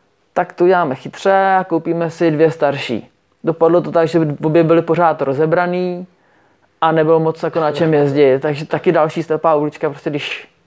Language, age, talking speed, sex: Czech, 20-39, 170 wpm, male